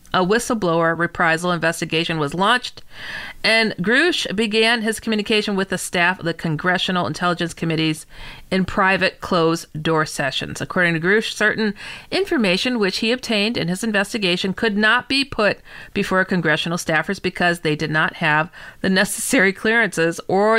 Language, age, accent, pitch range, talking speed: English, 40-59, American, 170-225 Hz, 145 wpm